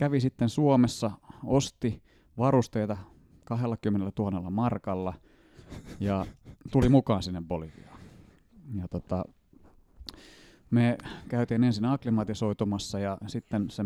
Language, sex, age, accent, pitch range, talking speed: Finnish, male, 30-49, native, 100-130 Hz, 95 wpm